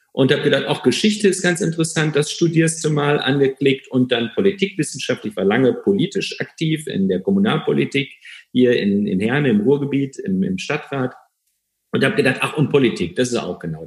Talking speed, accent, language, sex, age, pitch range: 180 wpm, German, German, male, 50-69, 125-195 Hz